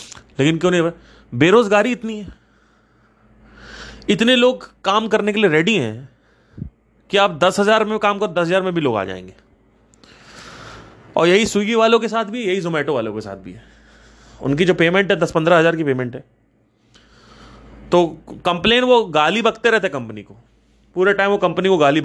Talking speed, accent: 180 wpm, native